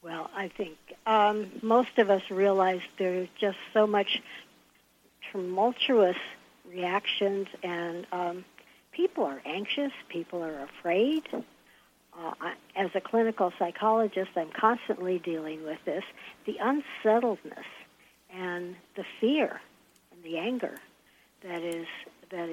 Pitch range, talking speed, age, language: 180-225 Hz, 115 wpm, 60-79, English